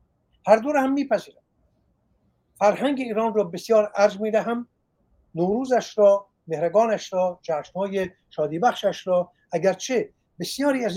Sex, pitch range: male, 185-245 Hz